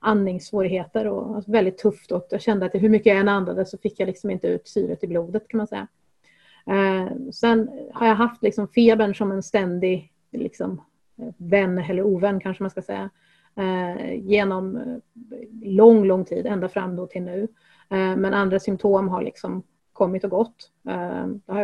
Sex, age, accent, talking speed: female, 30-49, native, 170 wpm